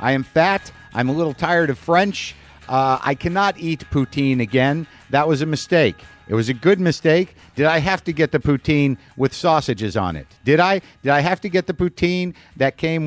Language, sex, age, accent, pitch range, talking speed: English, male, 50-69, American, 125-170 Hz, 210 wpm